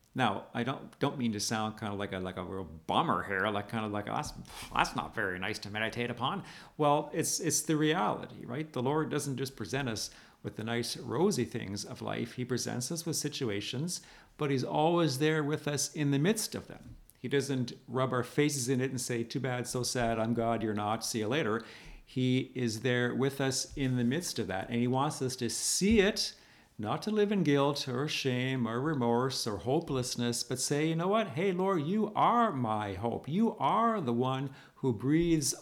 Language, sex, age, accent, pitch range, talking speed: English, male, 50-69, American, 120-155 Hz, 215 wpm